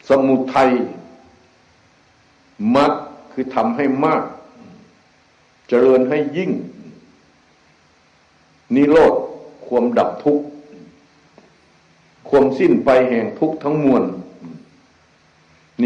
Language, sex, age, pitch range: Thai, male, 60-79, 130-155 Hz